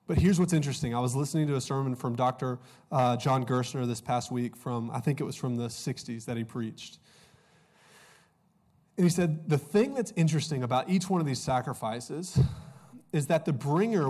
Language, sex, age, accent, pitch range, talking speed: English, male, 20-39, American, 130-165 Hz, 195 wpm